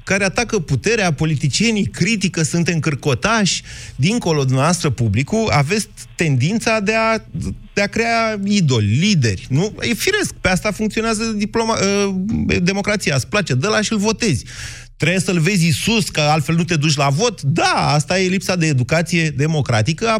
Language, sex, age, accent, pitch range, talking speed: Romanian, male, 30-49, native, 125-175 Hz, 165 wpm